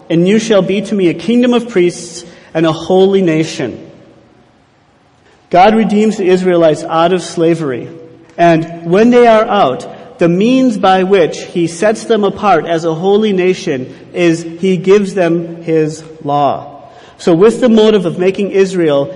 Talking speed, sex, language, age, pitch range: 160 wpm, male, English, 40-59, 165-205 Hz